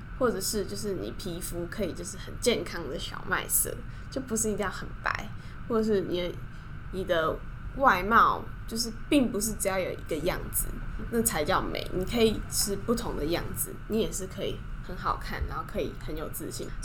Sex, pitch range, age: female, 185-245 Hz, 10-29